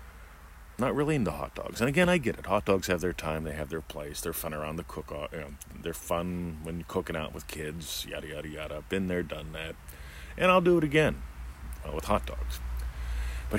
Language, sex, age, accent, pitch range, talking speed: English, male, 40-59, American, 70-95 Hz, 225 wpm